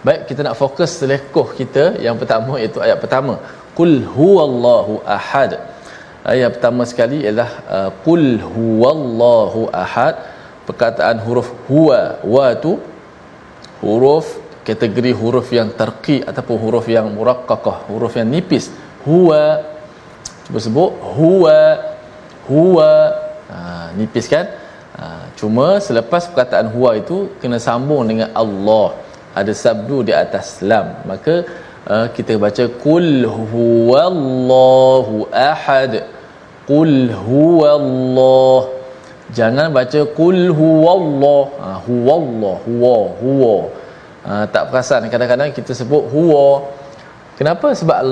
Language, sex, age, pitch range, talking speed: Malayalam, male, 20-39, 120-155 Hz, 110 wpm